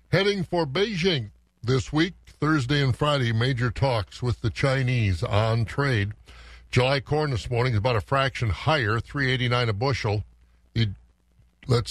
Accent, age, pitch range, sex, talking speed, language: American, 60-79, 120-160 Hz, male, 140 wpm, English